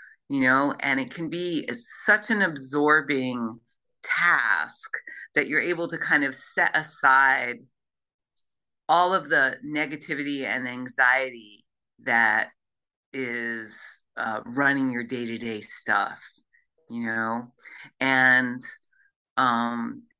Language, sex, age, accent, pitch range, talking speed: English, female, 40-59, American, 130-190 Hz, 105 wpm